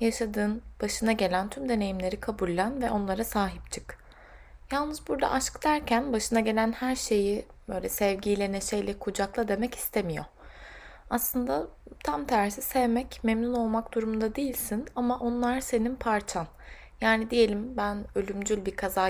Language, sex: Turkish, female